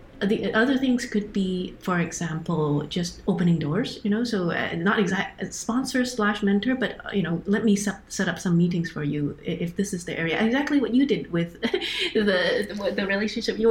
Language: English